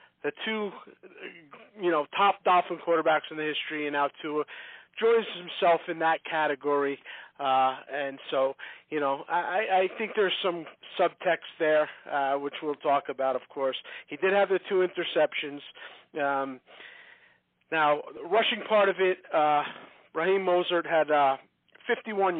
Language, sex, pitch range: English, male, 135-180 Hz